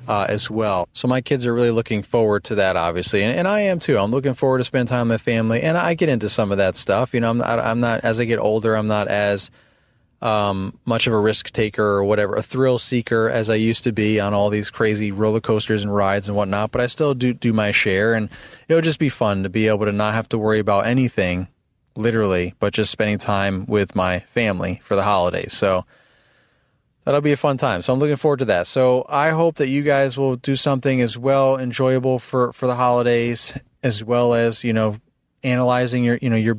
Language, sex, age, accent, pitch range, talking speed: English, male, 30-49, American, 105-125 Hz, 235 wpm